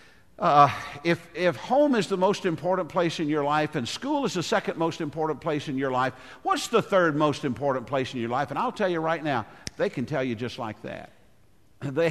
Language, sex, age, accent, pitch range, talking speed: English, male, 50-69, American, 125-175 Hz, 230 wpm